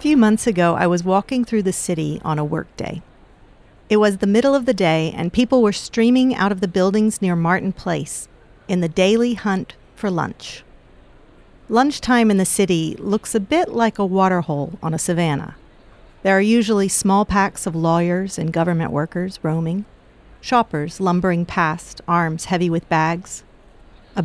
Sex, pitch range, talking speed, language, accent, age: female, 170-215 Hz, 170 wpm, English, American, 50-69